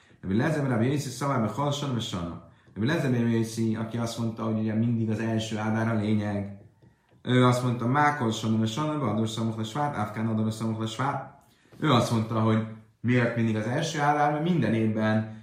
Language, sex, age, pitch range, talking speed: Hungarian, male, 30-49, 110-160 Hz, 150 wpm